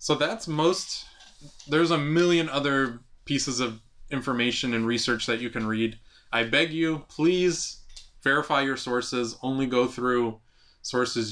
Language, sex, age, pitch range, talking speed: English, male, 20-39, 115-140 Hz, 145 wpm